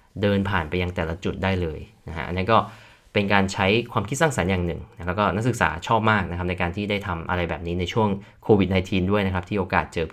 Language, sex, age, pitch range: Thai, male, 20-39, 90-110 Hz